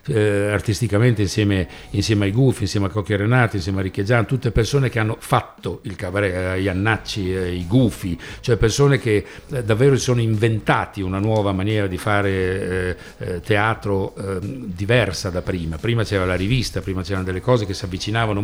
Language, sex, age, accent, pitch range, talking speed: Italian, male, 60-79, native, 100-130 Hz, 165 wpm